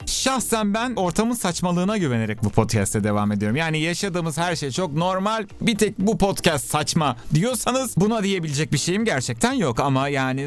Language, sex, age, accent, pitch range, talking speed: Turkish, male, 40-59, native, 120-175 Hz, 165 wpm